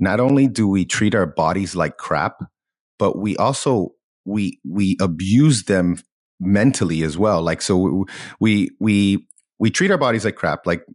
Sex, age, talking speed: male, 30-49, 170 wpm